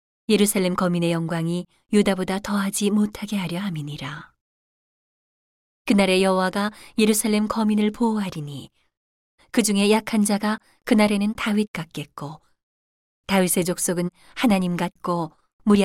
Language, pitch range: Korean, 165-210 Hz